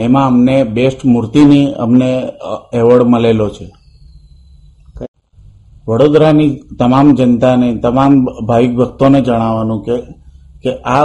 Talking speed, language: 70 wpm, Gujarati